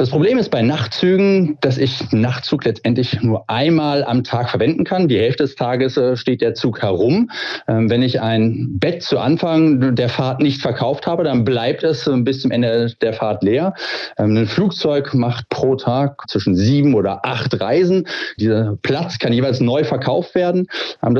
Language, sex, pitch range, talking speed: German, male, 125-170 Hz, 175 wpm